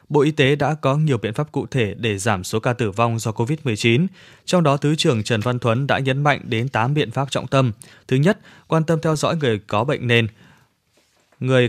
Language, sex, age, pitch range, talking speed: Vietnamese, male, 20-39, 120-145 Hz, 230 wpm